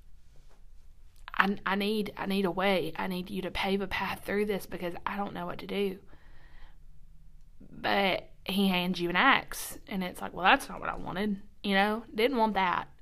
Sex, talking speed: female, 195 wpm